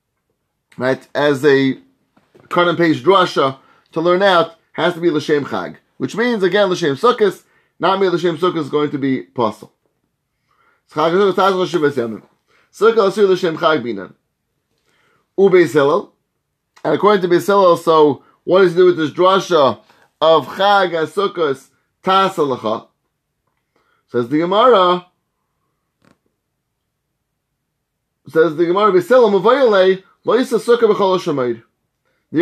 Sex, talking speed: male, 100 wpm